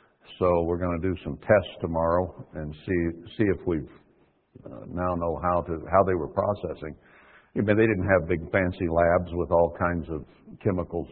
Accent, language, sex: American, English, male